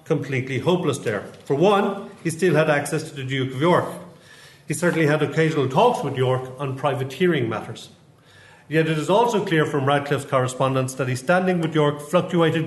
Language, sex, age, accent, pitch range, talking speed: English, male, 40-59, Irish, 130-170 Hz, 180 wpm